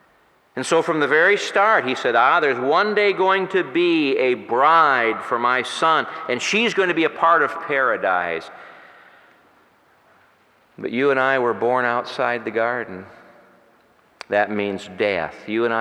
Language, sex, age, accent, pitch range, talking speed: English, male, 50-69, American, 95-120 Hz, 165 wpm